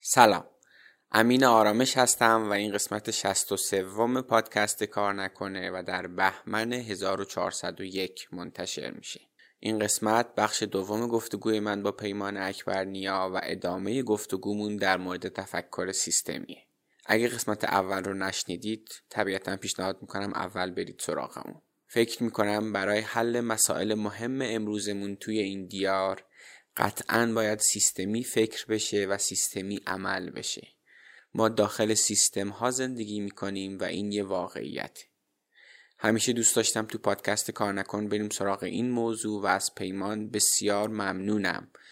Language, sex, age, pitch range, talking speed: Persian, male, 20-39, 100-115 Hz, 130 wpm